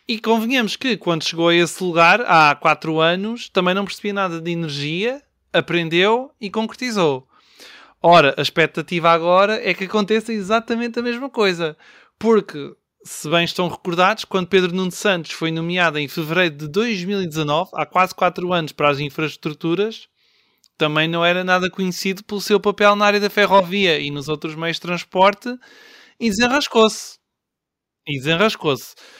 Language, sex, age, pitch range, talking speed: Portuguese, male, 20-39, 170-210 Hz, 155 wpm